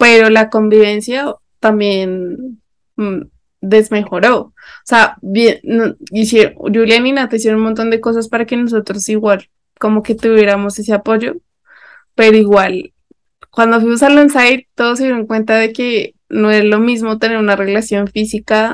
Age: 20-39